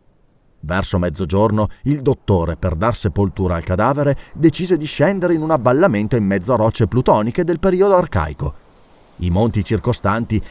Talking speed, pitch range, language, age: 150 wpm, 95-150 Hz, Italian, 30-49